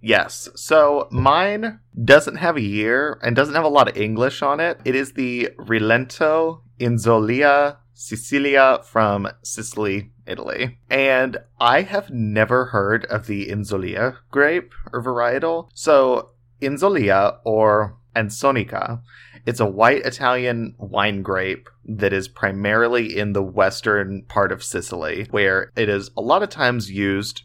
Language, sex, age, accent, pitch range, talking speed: English, male, 30-49, American, 105-125 Hz, 140 wpm